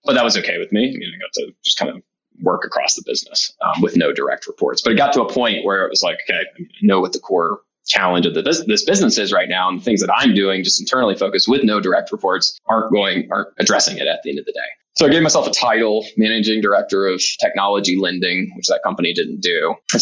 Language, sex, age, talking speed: English, male, 20-39, 265 wpm